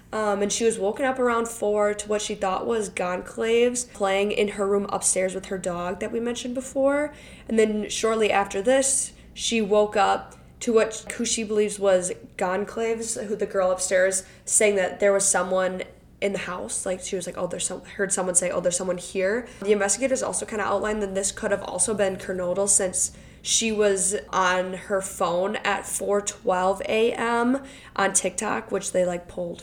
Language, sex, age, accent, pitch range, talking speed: English, female, 10-29, American, 185-220 Hz, 190 wpm